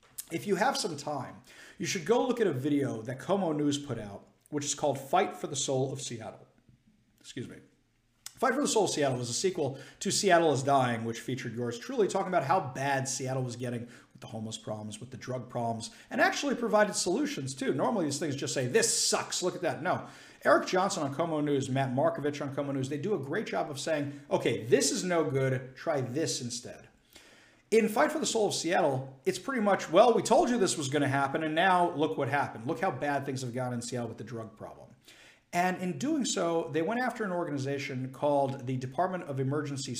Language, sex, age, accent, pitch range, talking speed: English, male, 50-69, American, 125-170 Hz, 225 wpm